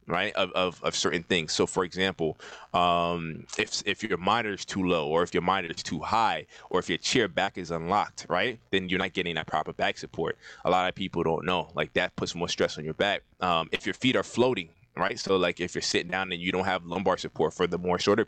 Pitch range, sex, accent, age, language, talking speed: 85-100 Hz, male, American, 20-39, English, 255 wpm